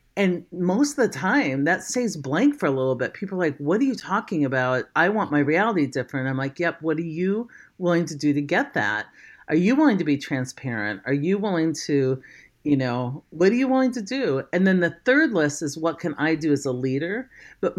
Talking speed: 235 wpm